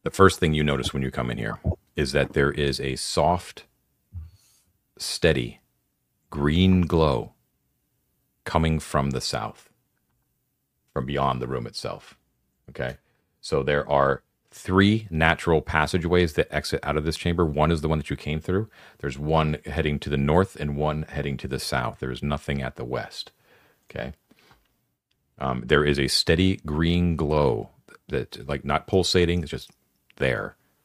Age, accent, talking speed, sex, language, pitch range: 40-59, American, 160 wpm, male, English, 70-85 Hz